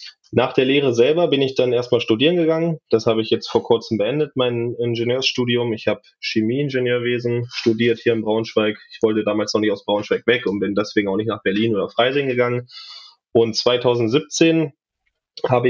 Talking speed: 180 wpm